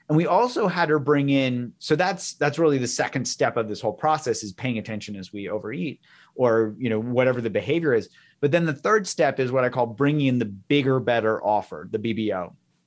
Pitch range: 120-165 Hz